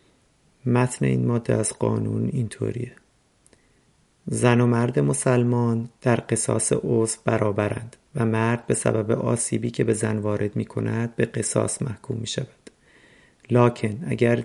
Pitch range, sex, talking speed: 110-125 Hz, male, 130 wpm